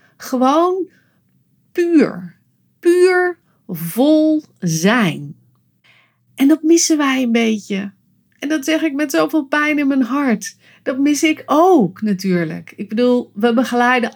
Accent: Dutch